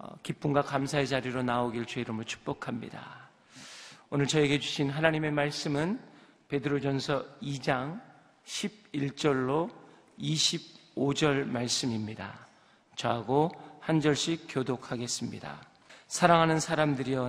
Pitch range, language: 125-150 Hz, Korean